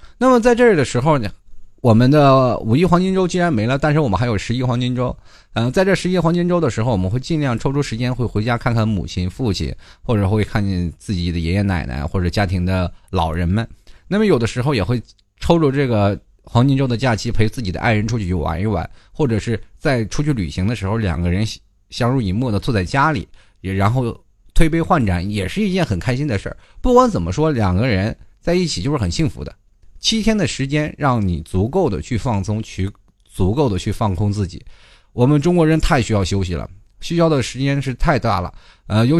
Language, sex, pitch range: Chinese, male, 95-140 Hz